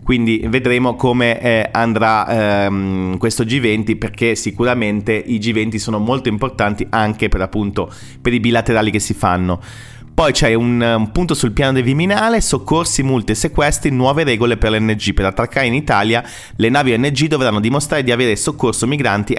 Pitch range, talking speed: 100-120 Hz, 165 wpm